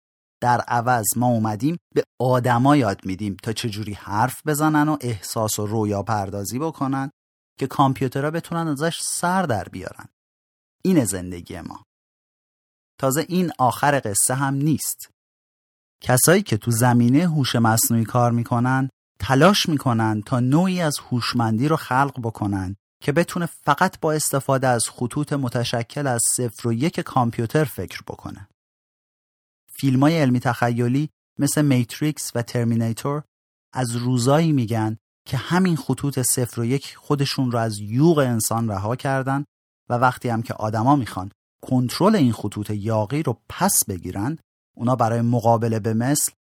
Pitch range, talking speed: 110-145 Hz, 140 wpm